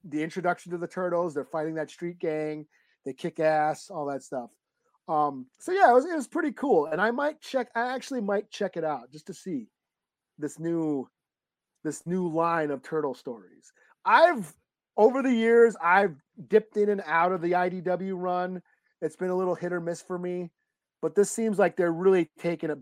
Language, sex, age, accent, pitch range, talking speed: English, male, 40-59, American, 155-195 Hz, 200 wpm